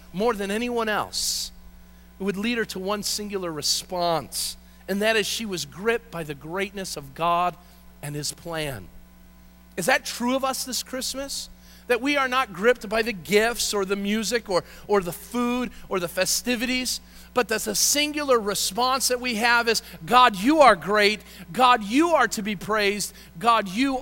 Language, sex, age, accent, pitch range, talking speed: English, male, 40-59, American, 160-235 Hz, 180 wpm